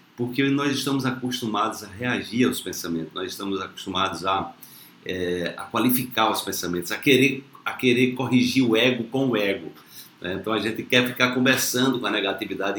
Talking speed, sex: 175 wpm, male